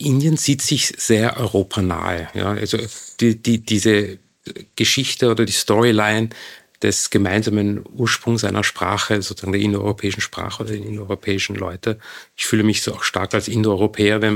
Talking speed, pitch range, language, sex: 150 wpm, 105-120 Hz, German, male